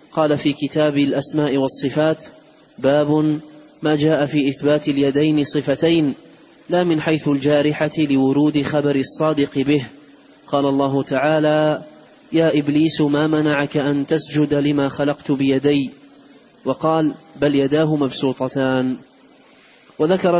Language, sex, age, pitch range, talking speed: Arabic, male, 30-49, 145-155 Hz, 110 wpm